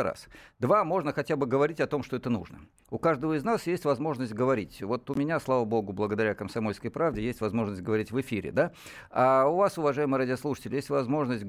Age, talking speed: 50-69, 205 wpm